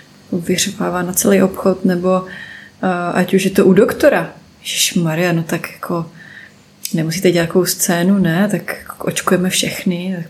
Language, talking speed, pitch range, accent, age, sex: Czech, 140 wpm, 180-220 Hz, native, 20-39, female